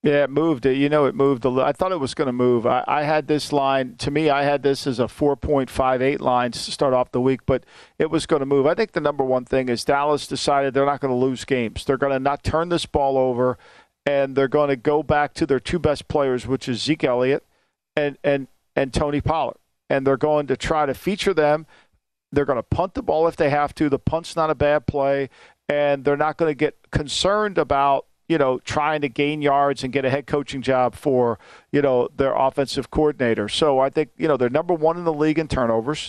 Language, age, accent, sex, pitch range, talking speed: English, 50-69, American, male, 135-155 Hz, 245 wpm